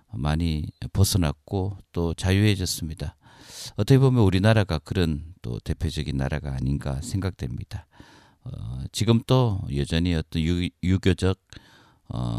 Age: 40-59